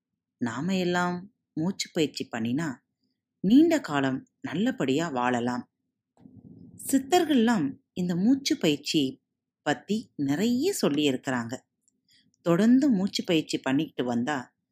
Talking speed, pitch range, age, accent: 85 wpm, 145-240 Hz, 30-49, native